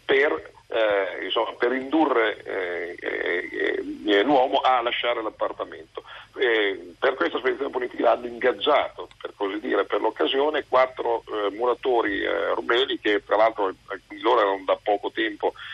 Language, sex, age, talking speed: Italian, male, 50-69, 135 wpm